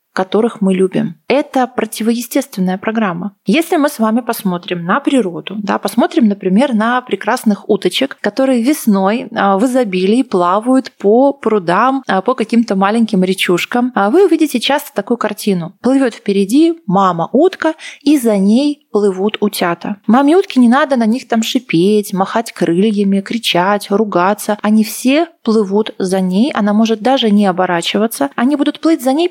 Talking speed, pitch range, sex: 145 wpm, 200-260 Hz, female